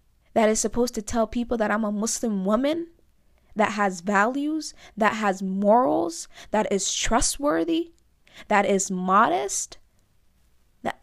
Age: 20-39